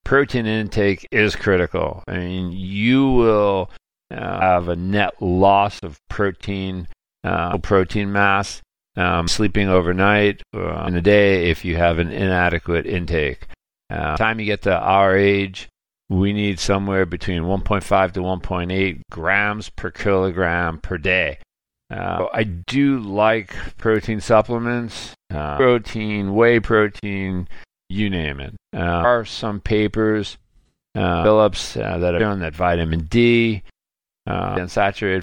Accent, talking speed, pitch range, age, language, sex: American, 135 wpm, 85-105 Hz, 50-69, English, male